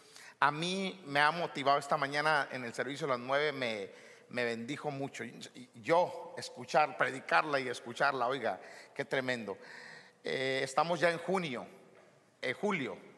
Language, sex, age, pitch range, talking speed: Spanish, male, 50-69, 140-175 Hz, 145 wpm